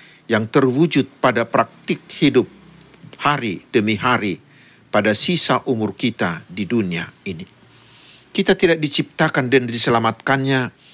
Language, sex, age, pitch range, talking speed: Indonesian, male, 50-69, 115-155 Hz, 110 wpm